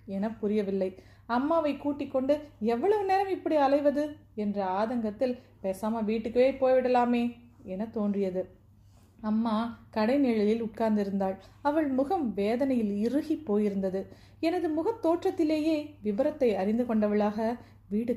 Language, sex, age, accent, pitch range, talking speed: Tamil, female, 30-49, native, 200-280 Hz, 100 wpm